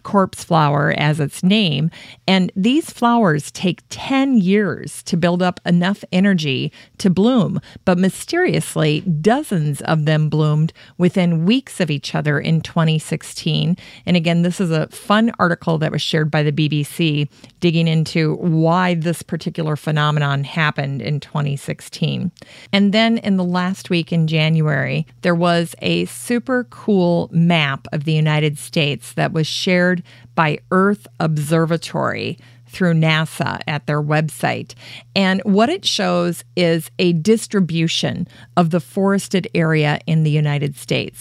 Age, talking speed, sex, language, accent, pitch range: 40-59, 140 wpm, female, English, American, 155-185 Hz